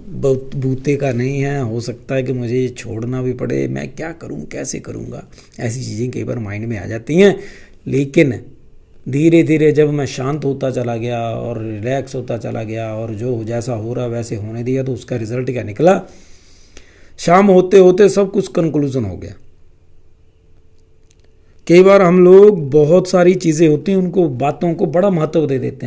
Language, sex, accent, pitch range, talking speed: Hindi, male, native, 110-175 Hz, 180 wpm